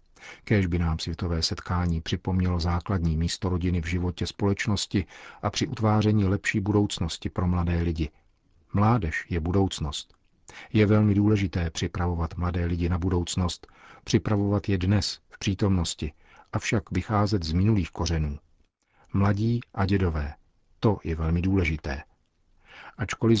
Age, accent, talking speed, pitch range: 50-69, native, 125 wpm, 85-100 Hz